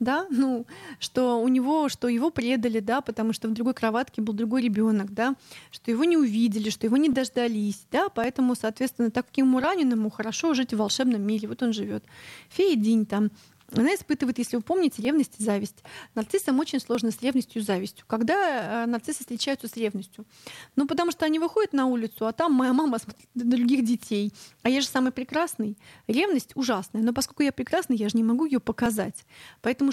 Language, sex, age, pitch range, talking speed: Russian, female, 30-49, 225-275 Hz, 190 wpm